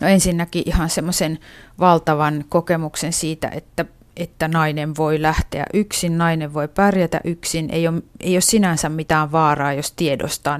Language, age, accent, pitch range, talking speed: Finnish, 30-49, native, 155-175 Hz, 145 wpm